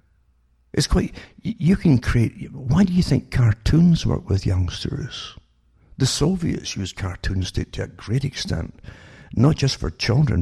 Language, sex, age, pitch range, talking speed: English, male, 60-79, 95-135 Hz, 150 wpm